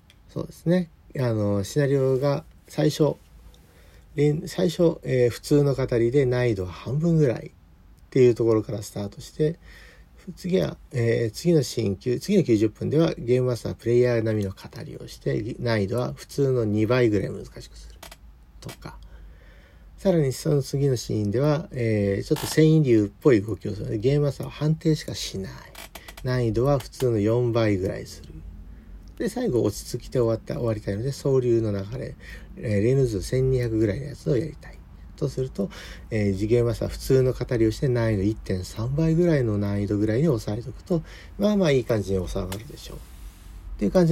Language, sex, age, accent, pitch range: Japanese, male, 50-69, native, 100-145 Hz